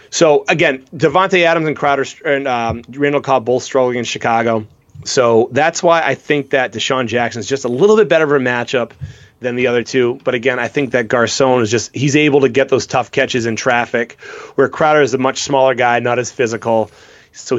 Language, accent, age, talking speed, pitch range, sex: English, American, 30-49, 215 wpm, 120-160 Hz, male